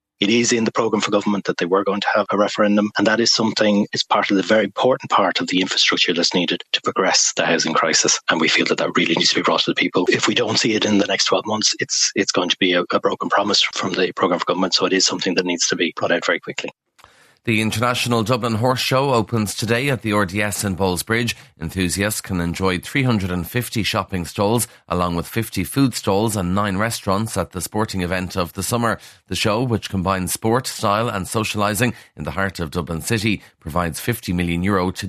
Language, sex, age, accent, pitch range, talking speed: English, male, 30-49, Irish, 90-110 Hz, 235 wpm